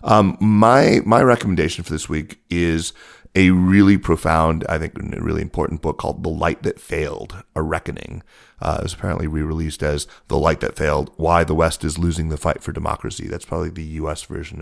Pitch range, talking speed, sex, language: 75-85 Hz, 195 wpm, male, English